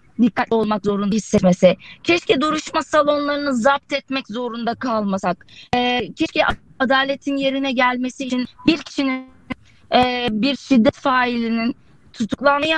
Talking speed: 115 wpm